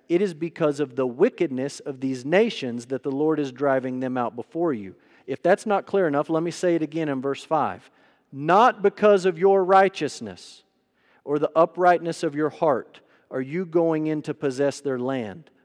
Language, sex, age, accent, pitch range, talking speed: English, male, 40-59, American, 130-175 Hz, 190 wpm